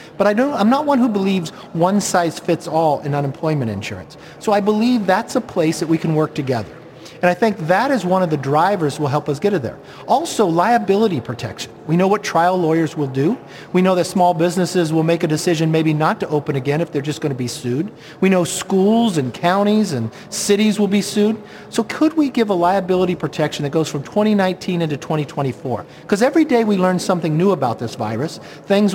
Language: English